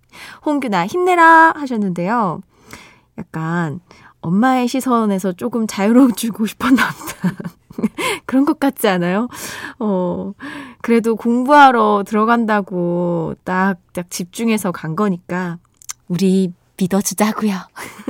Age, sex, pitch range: 20-39, female, 185-275 Hz